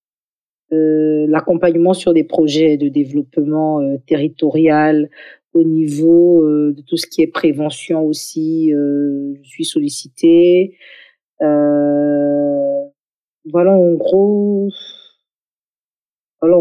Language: French